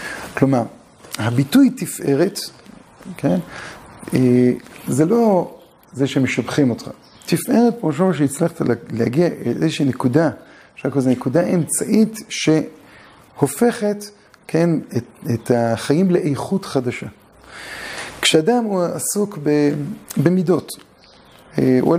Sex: male